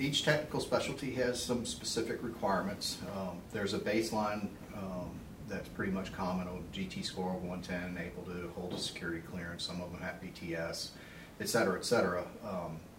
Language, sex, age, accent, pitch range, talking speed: English, male, 40-59, American, 85-105 Hz, 175 wpm